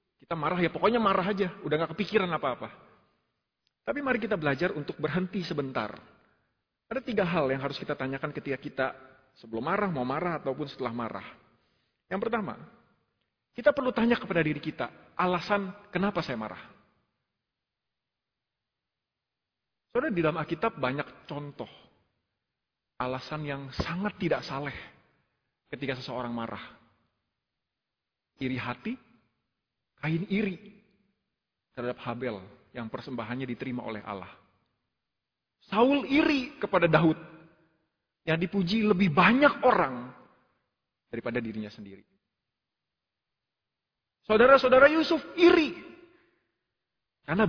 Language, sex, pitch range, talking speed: Italian, male, 125-205 Hz, 110 wpm